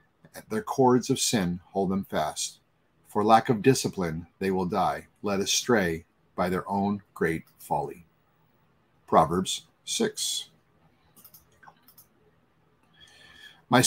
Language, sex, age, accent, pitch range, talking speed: English, male, 50-69, American, 95-135 Hz, 105 wpm